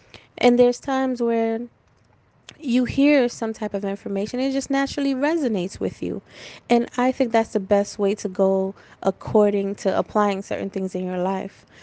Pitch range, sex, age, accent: 190-230 Hz, female, 20-39, American